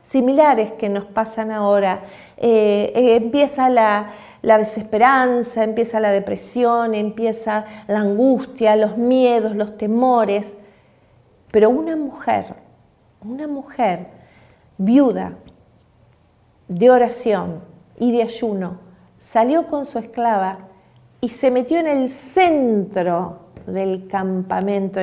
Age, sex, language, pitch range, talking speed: 40-59, female, Spanish, 200-250 Hz, 105 wpm